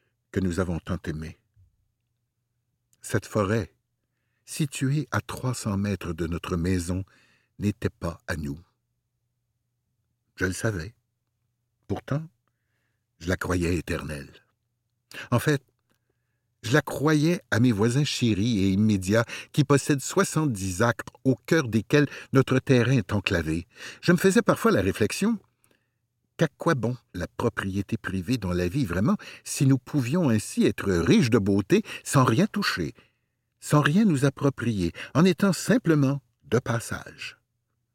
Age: 60-79